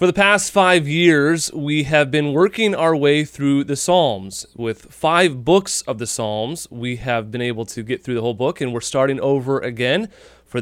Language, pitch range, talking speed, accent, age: English, 120-150 Hz, 205 wpm, American, 30-49